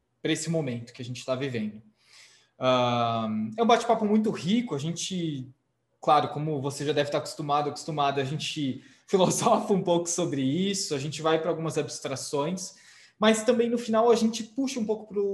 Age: 20-39